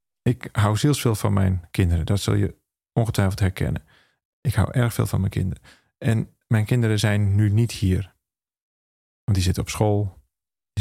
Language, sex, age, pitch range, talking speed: Dutch, male, 40-59, 95-120 Hz, 170 wpm